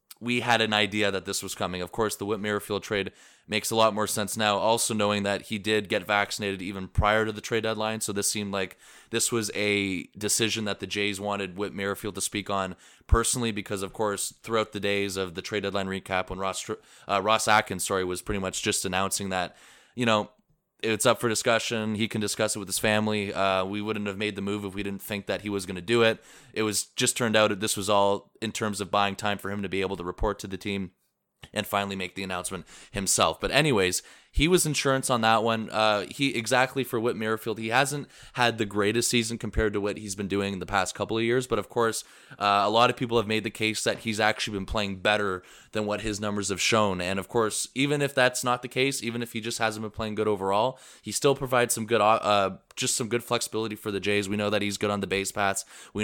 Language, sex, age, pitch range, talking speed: English, male, 20-39, 100-115 Hz, 245 wpm